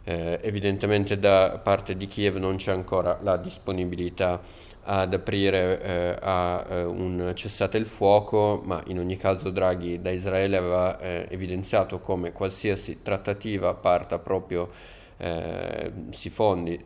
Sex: male